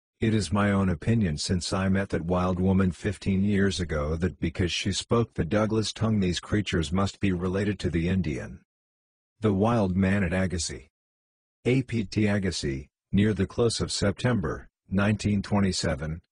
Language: English